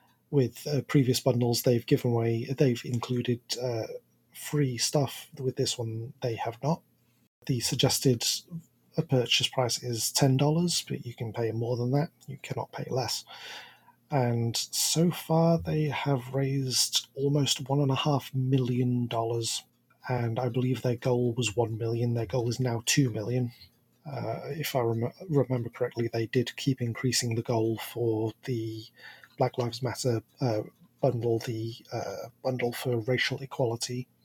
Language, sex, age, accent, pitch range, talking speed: English, male, 30-49, British, 120-140 Hz, 160 wpm